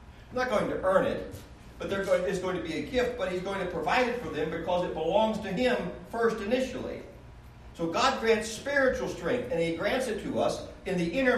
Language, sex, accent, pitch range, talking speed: English, male, American, 150-225 Hz, 215 wpm